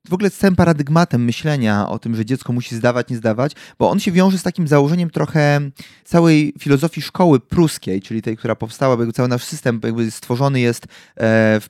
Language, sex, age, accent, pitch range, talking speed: Polish, male, 30-49, native, 115-160 Hz, 190 wpm